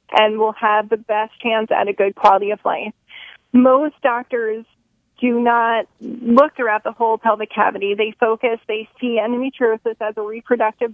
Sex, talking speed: female, 165 wpm